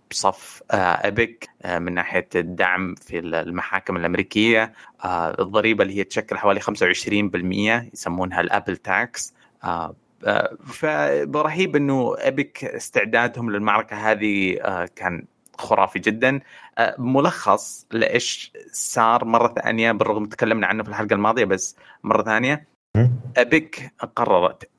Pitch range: 95-120 Hz